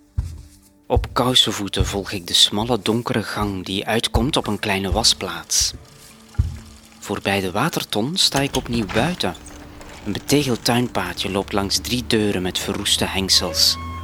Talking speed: 135 wpm